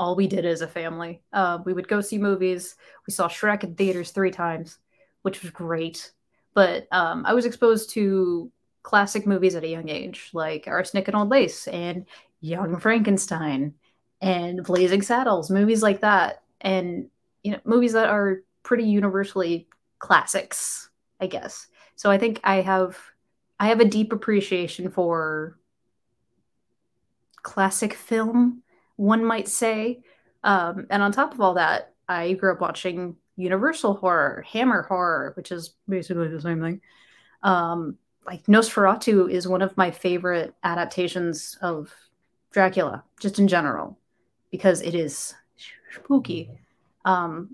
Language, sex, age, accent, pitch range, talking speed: English, female, 20-39, American, 175-215 Hz, 145 wpm